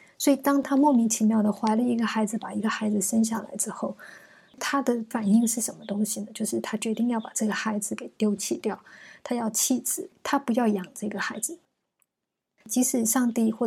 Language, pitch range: Chinese, 215-245 Hz